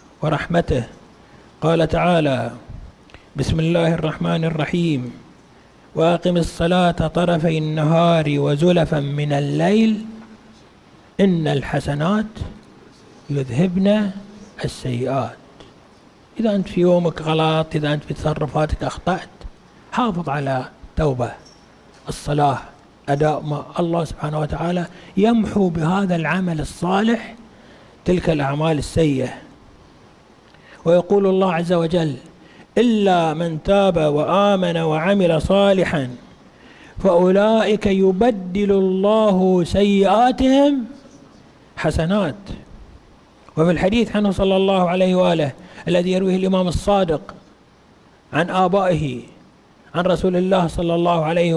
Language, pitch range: Arabic, 155-195 Hz